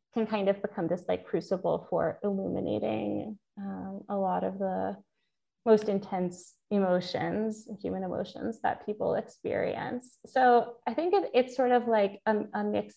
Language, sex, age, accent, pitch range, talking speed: English, female, 20-39, American, 190-225 Hz, 155 wpm